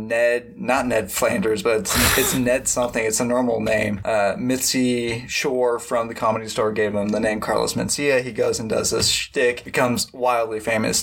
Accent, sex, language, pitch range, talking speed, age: American, male, English, 115-125 Hz, 190 wpm, 20-39